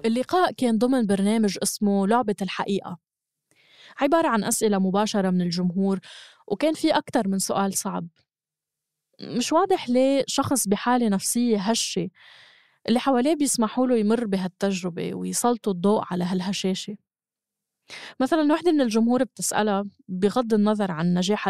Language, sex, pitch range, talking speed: Arabic, female, 190-240 Hz, 125 wpm